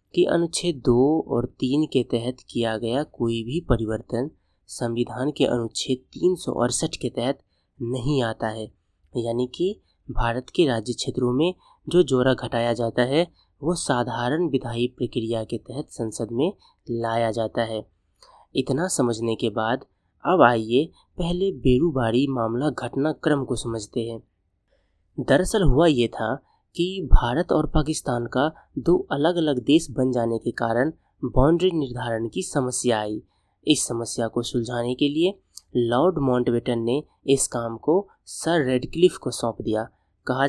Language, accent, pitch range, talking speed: Hindi, native, 115-150 Hz, 145 wpm